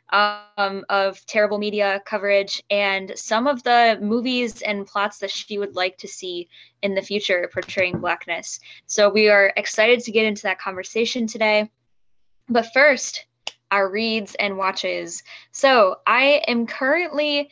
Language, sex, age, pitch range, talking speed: English, female, 10-29, 200-240 Hz, 145 wpm